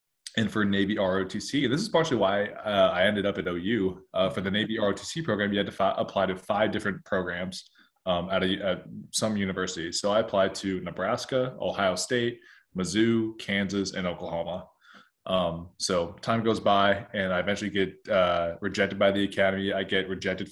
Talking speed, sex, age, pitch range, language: 180 wpm, male, 20-39, 90-100 Hz, English